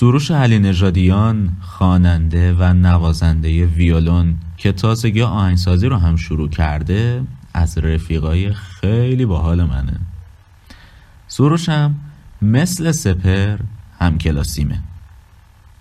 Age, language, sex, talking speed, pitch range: 30-49, Persian, male, 90 wpm, 85-105 Hz